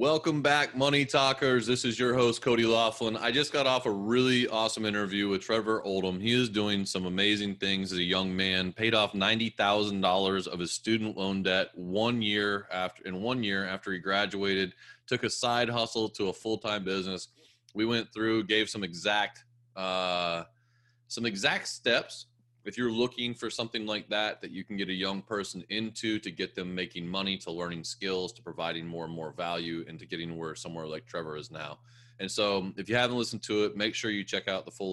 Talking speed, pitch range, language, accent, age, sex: 210 wpm, 95-115 Hz, English, American, 30-49, male